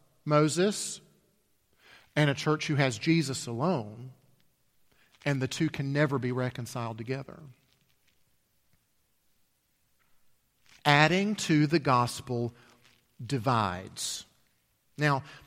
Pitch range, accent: 125-180 Hz, American